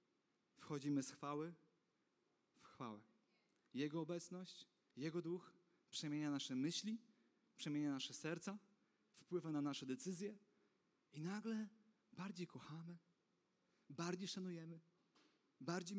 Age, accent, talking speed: 30-49, native, 100 wpm